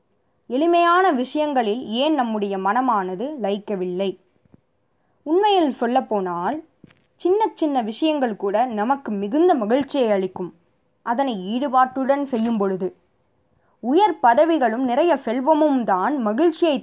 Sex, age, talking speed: female, 20-39, 95 wpm